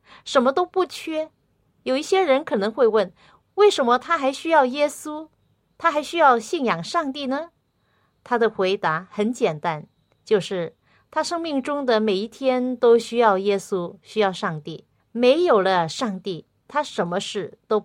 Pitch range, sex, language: 195-265 Hz, female, Chinese